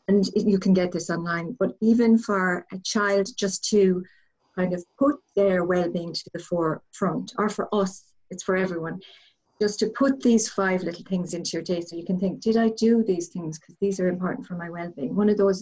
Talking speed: 215 wpm